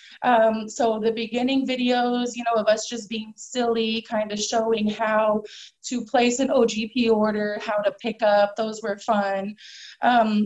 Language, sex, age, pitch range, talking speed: English, female, 20-39, 205-245 Hz, 165 wpm